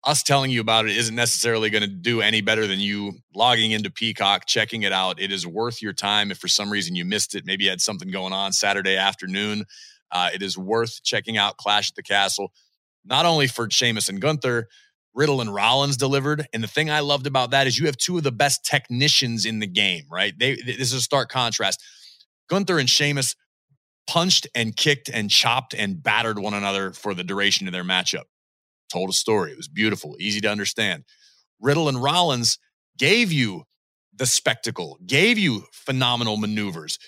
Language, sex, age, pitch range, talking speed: English, male, 30-49, 105-135 Hz, 200 wpm